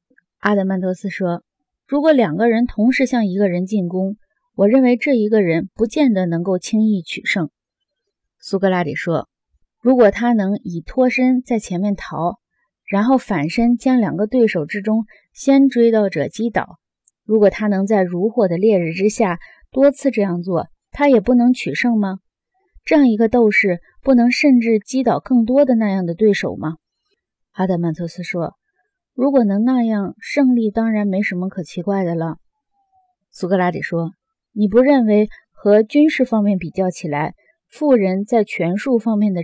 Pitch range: 185-240 Hz